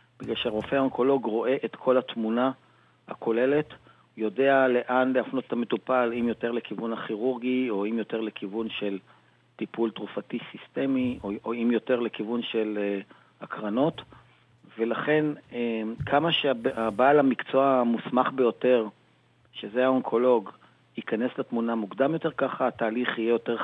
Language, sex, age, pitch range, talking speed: Hebrew, male, 40-59, 115-135 Hz, 120 wpm